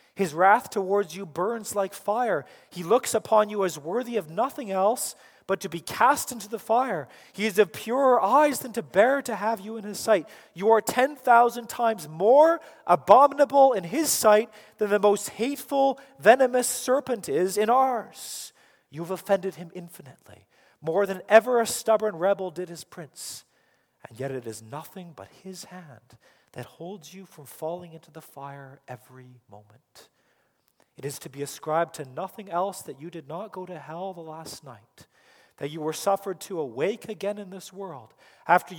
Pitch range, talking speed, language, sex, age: 165-225 Hz, 180 wpm, English, male, 40-59